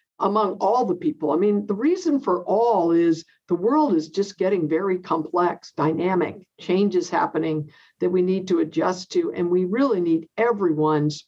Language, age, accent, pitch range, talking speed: English, 50-69, American, 165-210 Hz, 170 wpm